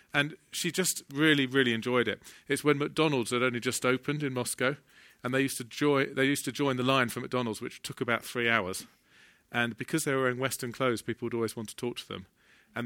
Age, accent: 40-59, British